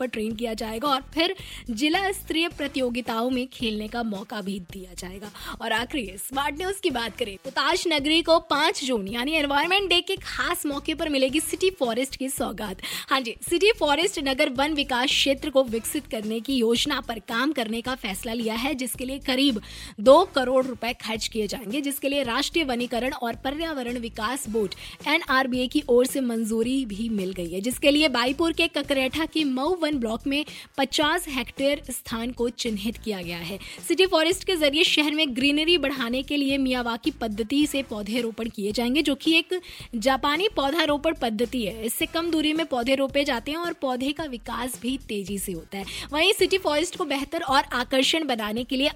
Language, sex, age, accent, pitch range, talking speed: Hindi, female, 20-39, native, 235-295 Hz, 145 wpm